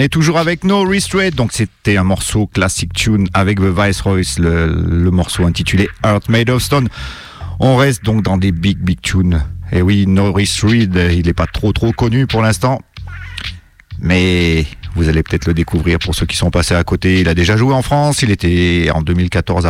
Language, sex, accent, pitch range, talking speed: English, male, French, 85-110 Hz, 195 wpm